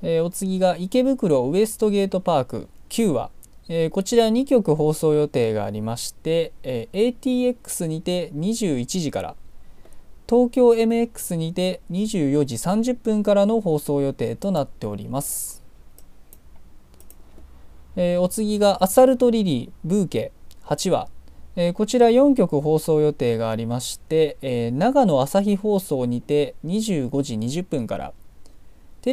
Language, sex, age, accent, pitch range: Japanese, male, 20-39, native, 140-210 Hz